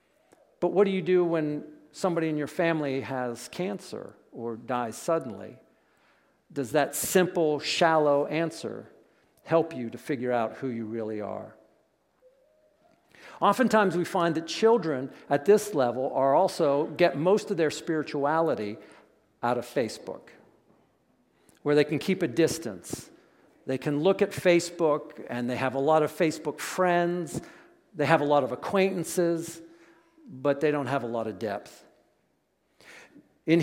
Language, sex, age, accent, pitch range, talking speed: English, male, 50-69, American, 150-225 Hz, 145 wpm